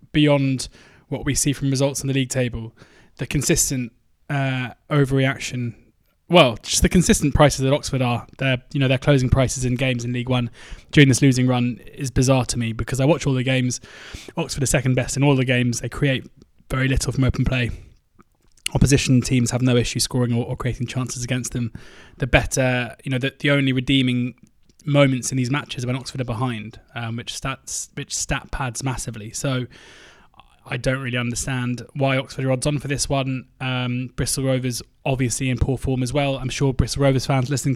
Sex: male